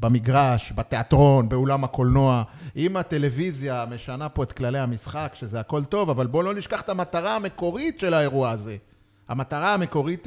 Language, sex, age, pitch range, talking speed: Hebrew, male, 30-49, 115-155 Hz, 150 wpm